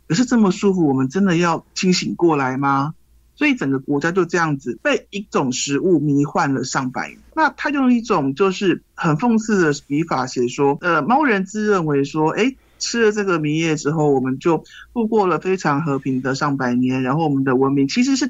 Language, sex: Chinese, male